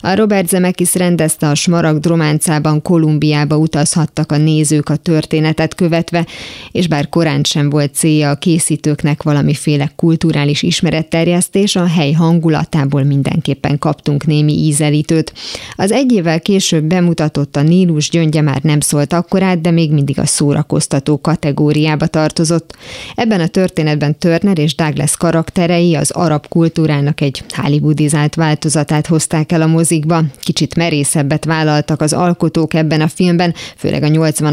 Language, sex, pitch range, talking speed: Hungarian, female, 150-170 Hz, 135 wpm